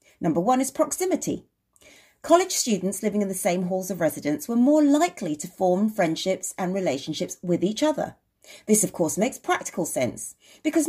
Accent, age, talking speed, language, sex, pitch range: British, 40-59, 170 wpm, English, female, 175-270 Hz